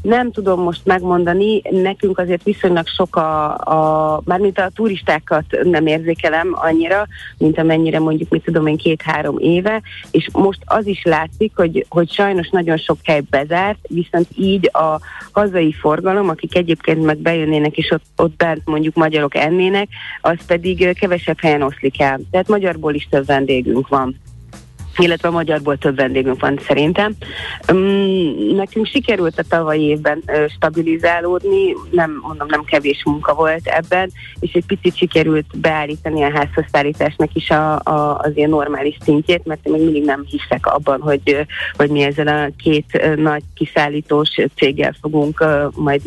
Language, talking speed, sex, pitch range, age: Hungarian, 150 wpm, female, 150-175 Hz, 30-49